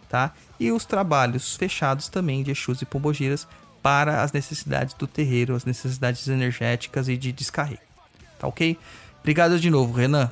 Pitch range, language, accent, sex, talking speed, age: 130-160 Hz, Portuguese, Brazilian, male, 155 wpm, 30-49